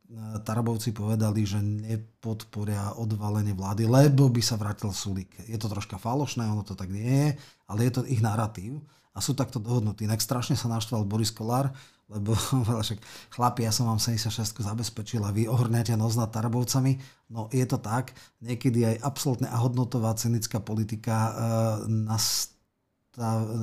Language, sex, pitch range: Slovak, male, 105-120 Hz